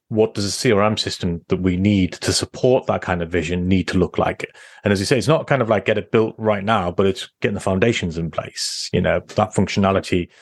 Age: 30-49